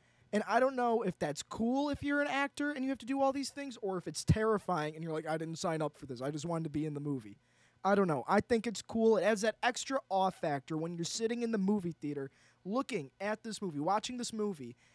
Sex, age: male, 20-39